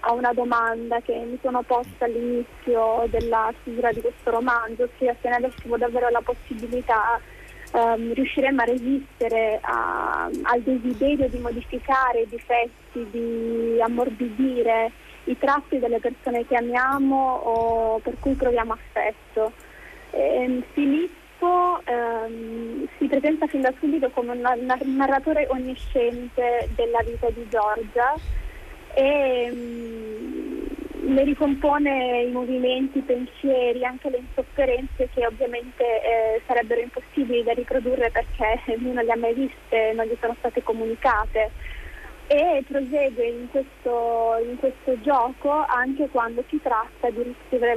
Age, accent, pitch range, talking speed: 20-39, native, 230-265 Hz, 125 wpm